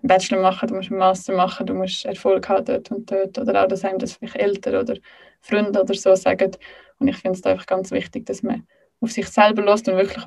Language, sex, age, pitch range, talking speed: German, female, 20-39, 185-225 Hz, 245 wpm